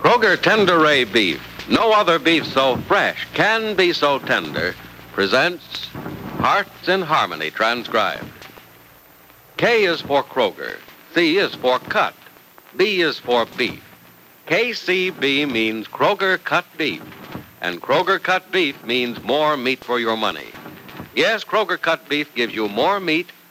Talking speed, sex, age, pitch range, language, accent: 135 wpm, male, 70-89, 120-195 Hz, English, American